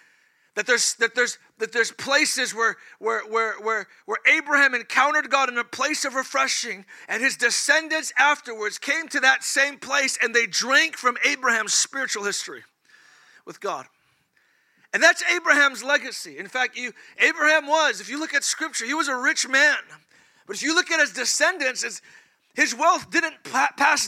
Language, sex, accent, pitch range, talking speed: English, male, American, 225-285 Hz, 150 wpm